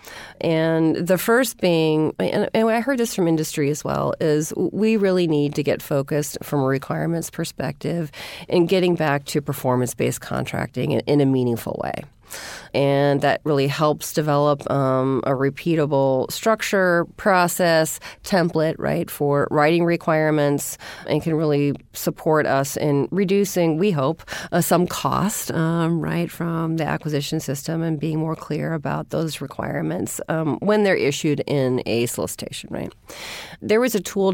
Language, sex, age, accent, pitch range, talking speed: English, female, 40-59, American, 145-180 Hz, 155 wpm